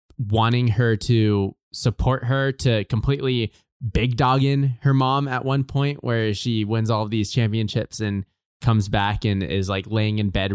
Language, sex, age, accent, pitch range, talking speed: English, male, 20-39, American, 100-120 Hz, 165 wpm